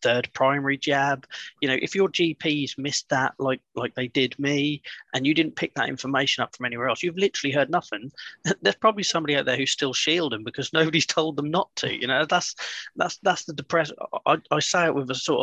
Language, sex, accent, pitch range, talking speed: English, male, British, 125-155 Hz, 220 wpm